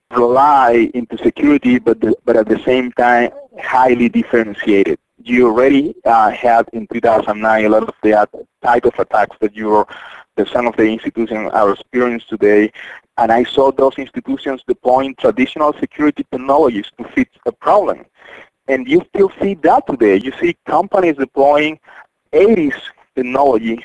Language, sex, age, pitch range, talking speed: English, male, 40-59, 115-150 Hz, 145 wpm